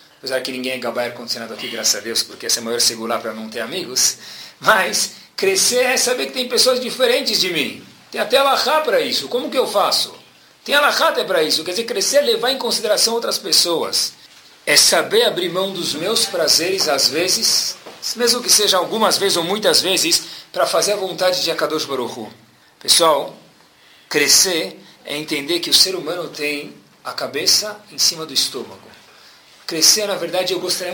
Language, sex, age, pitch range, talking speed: Portuguese, male, 50-69, 130-220 Hz, 190 wpm